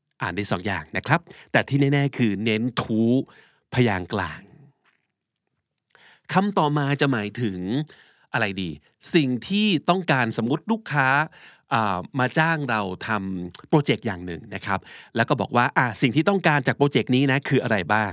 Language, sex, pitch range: Thai, male, 110-150 Hz